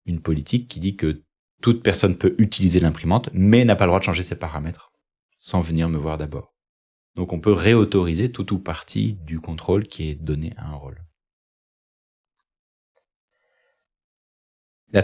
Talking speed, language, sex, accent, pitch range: 160 wpm, French, male, French, 80-95 Hz